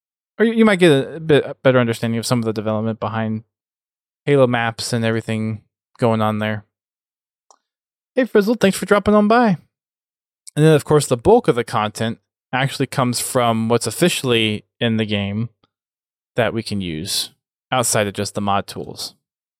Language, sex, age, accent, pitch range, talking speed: English, male, 20-39, American, 110-140 Hz, 165 wpm